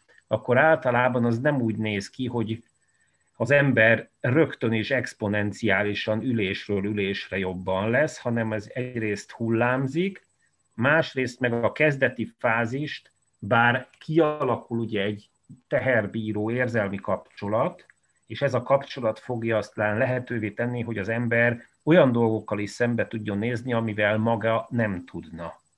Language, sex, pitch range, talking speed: Hungarian, male, 105-130 Hz, 125 wpm